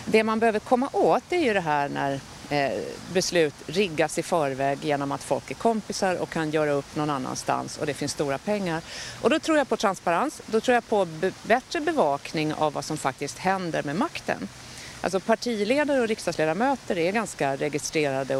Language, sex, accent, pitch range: English, female, Swedish, 145-220 Hz